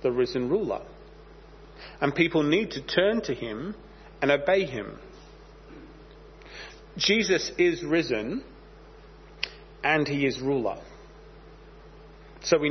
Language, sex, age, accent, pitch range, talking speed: English, male, 40-59, British, 145-205 Hz, 105 wpm